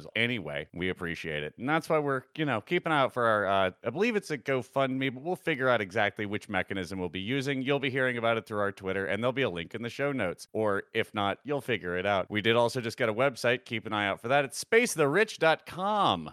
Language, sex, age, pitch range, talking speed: English, male, 30-49, 115-155 Hz, 260 wpm